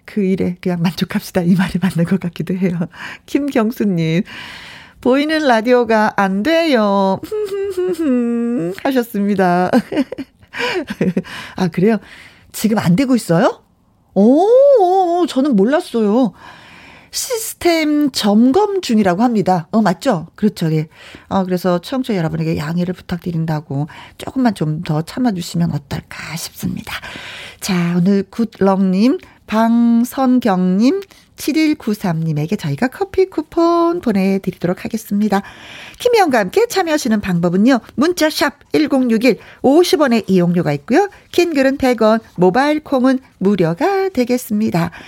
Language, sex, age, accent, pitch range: Korean, female, 40-59, native, 190-310 Hz